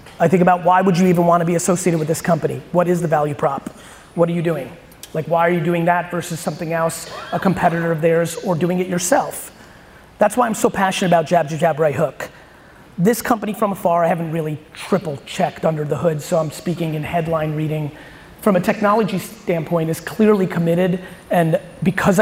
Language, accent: English, American